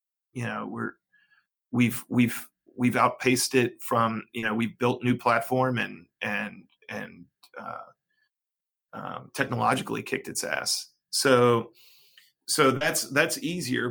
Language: English